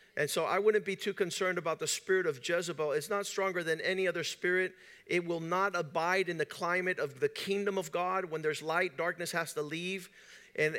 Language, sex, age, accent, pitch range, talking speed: English, male, 50-69, American, 160-185 Hz, 215 wpm